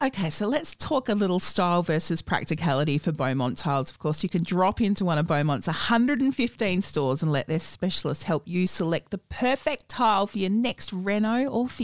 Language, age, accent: English, 30-49, Australian